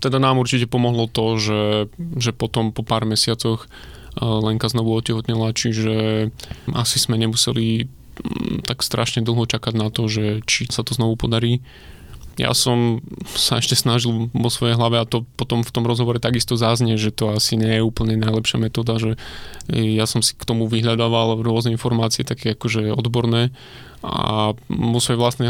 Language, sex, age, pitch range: Slovak, male, 20-39, 115-120 Hz